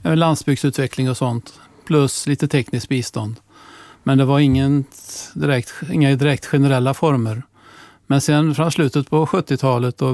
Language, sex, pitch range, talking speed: Swedish, male, 120-140 Hz, 130 wpm